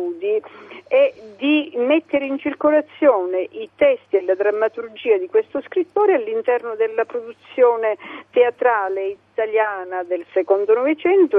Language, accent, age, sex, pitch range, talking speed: Italian, native, 50-69, female, 200-315 Hz, 110 wpm